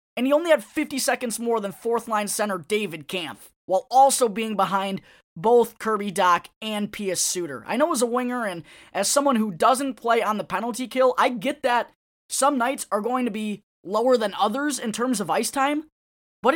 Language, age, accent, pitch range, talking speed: English, 20-39, American, 205-265 Hz, 200 wpm